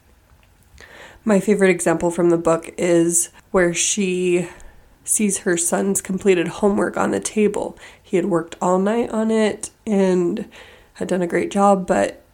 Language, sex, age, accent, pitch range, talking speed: English, female, 20-39, American, 175-200 Hz, 150 wpm